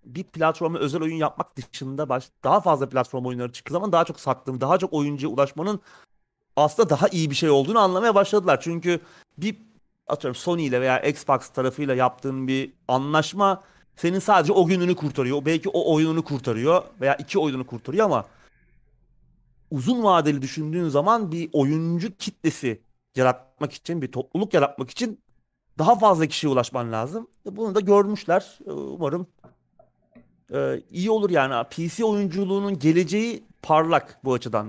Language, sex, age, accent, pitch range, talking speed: Turkish, male, 40-59, native, 130-170 Hz, 145 wpm